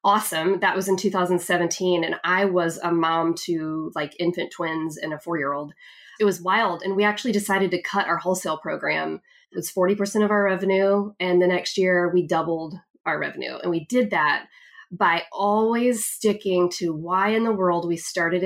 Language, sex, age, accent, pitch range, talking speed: English, female, 20-39, American, 170-210 Hz, 185 wpm